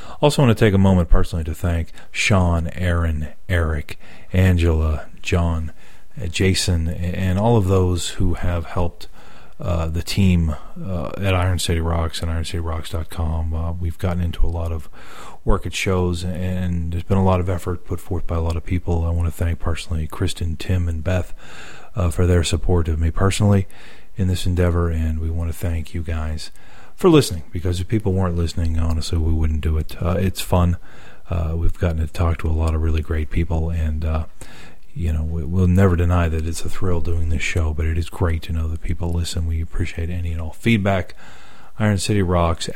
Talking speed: 195 wpm